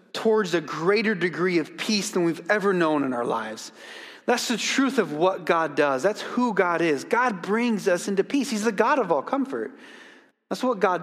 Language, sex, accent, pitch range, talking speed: English, male, American, 145-225 Hz, 205 wpm